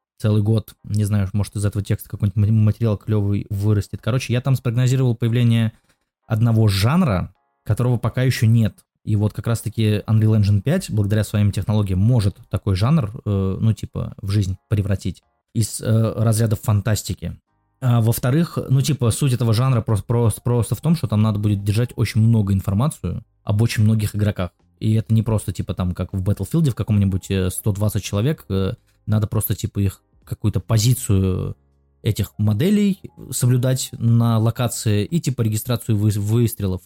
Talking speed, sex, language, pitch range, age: 165 wpm, male, Russian, 100-120 Hz, 20-39